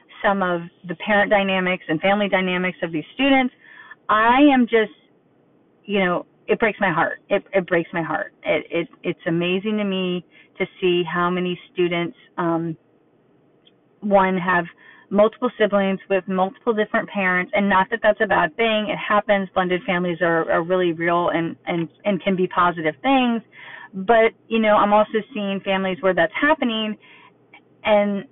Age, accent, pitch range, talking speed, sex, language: 30-49, American, 170-215 Hz, 165 wpm, female, English